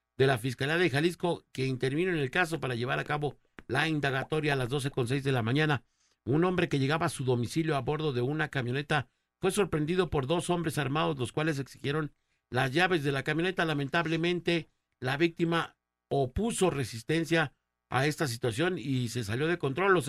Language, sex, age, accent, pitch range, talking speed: Spanish, male, 50-69, Mexican, 120-155 Hz, 190 wpm